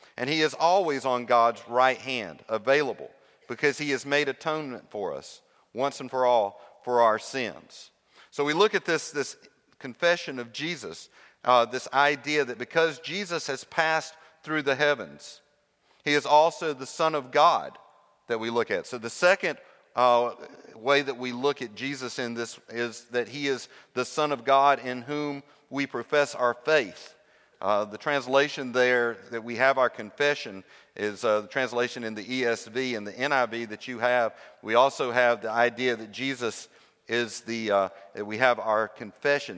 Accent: American